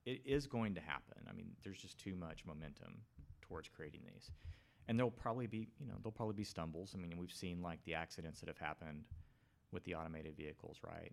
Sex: male